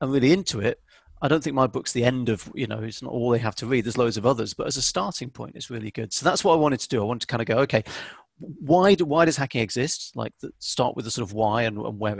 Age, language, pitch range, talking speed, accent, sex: 40-59, English, 110-135 Hz, 315 wpm, British, male